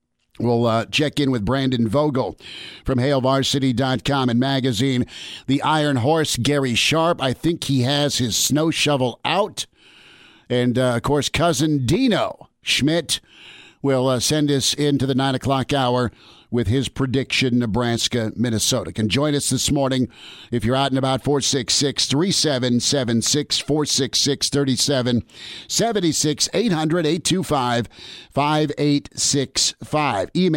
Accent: American